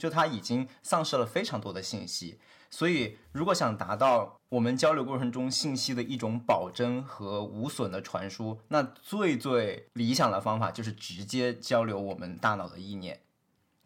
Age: 20-39